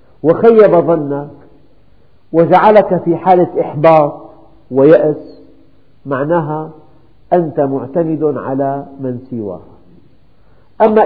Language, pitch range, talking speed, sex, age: Arabic, 130-170 Hz, 70 wpm, male, 50-69